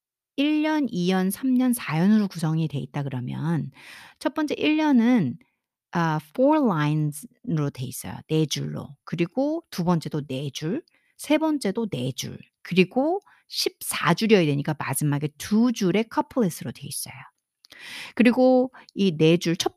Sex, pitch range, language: female, 155-255 Hz, Korean